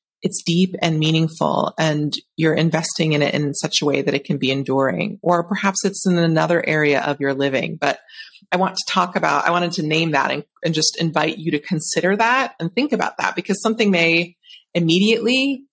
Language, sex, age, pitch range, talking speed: English, female, 30-49, 150-195 Hz, 205 wpm